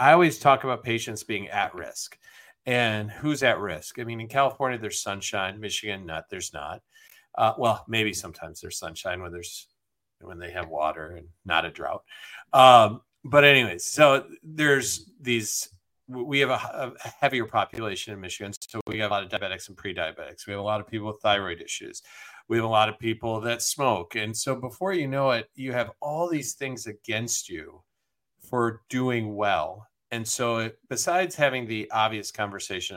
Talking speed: 185 wpm